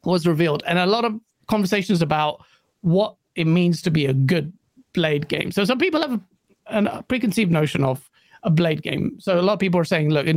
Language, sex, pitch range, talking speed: English, male, 160-220 Hz, 220 wpm